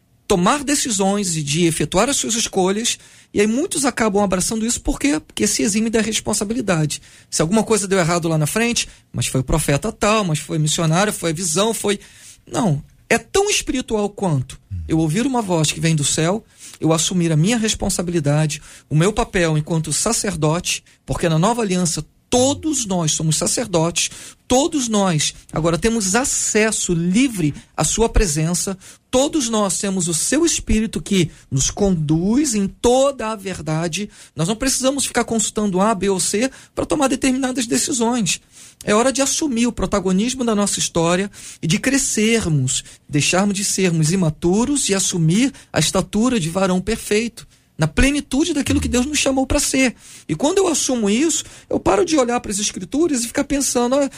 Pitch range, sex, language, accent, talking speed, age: 170-255 Hz, male, Portuguese, Brazilian, 170 wpm, 40-59